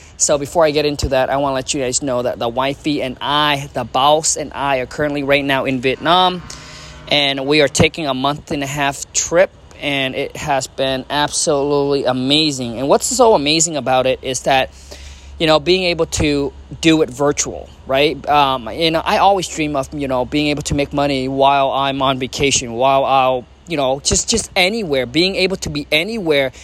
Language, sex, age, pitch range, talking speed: English, male, 20-39, 135-160 Hz, 205 wpm